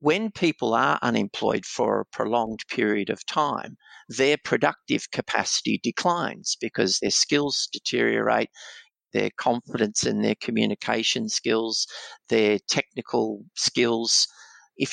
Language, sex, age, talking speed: English, male, 50-69, 115 wpm